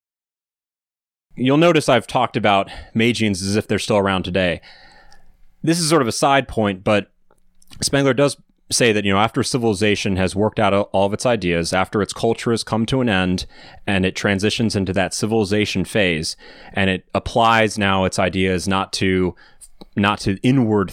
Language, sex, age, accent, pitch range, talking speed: English, male, 30-49, American, 95-115 Hz, 175 wpm